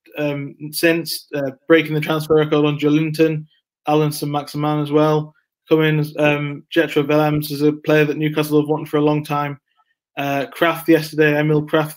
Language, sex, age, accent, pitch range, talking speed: English, male, 20-39, British, 145-160 Hz, 170 wpm